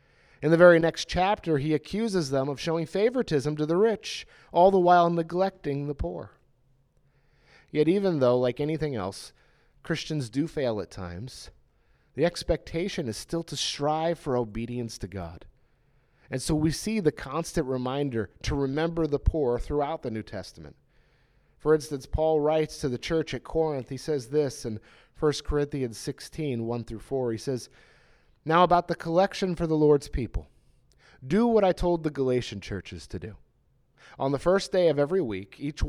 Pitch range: 125-165 Hz